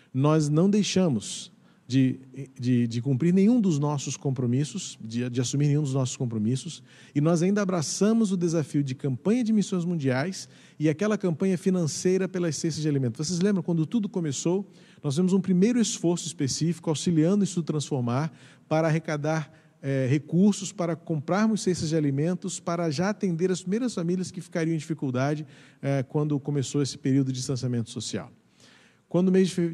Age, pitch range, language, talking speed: 40-59, 140-180 Hz, Portuguese, 165 wpm